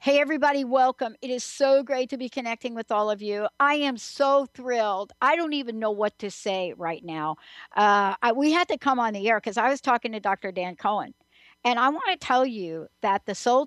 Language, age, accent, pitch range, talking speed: English, 60-79, American, 205-260 Hz, 235 wpm